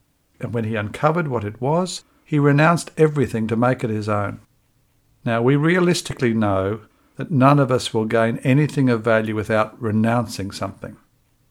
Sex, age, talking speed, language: male, 60-79, 160 wpm, English